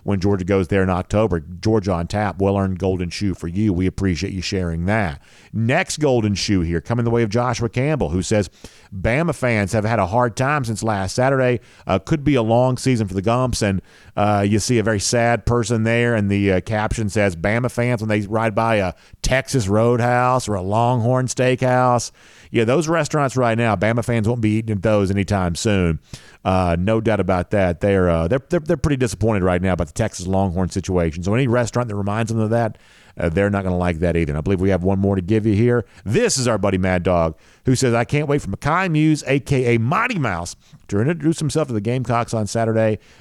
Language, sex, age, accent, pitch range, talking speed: English, male, 50-69, American, 95-120 Hz, 225 wpm